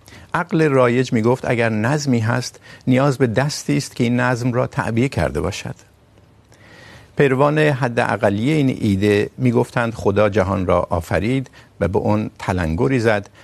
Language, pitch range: Urdu, 95-125 Hz